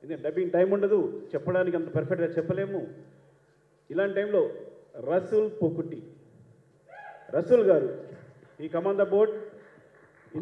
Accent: native